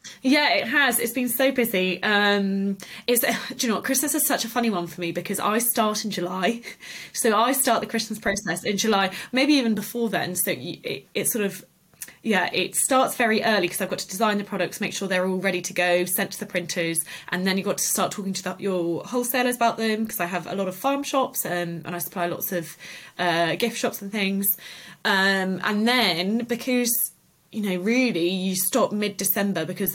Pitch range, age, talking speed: 180-230 Hz, 20-39, 220 wpm